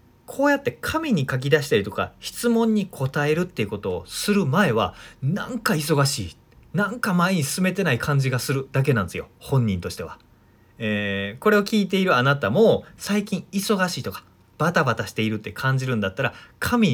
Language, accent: Japanese, native